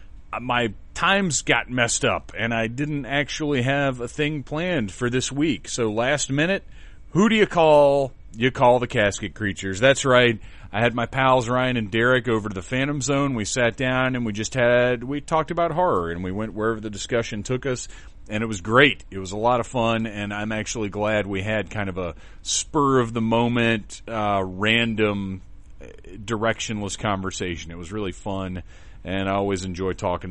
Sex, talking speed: male, 185 wpm